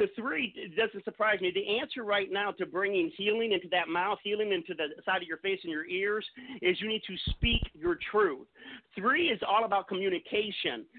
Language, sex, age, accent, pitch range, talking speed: English, male, 40-59, American, 180-245 Hz, 210 wpm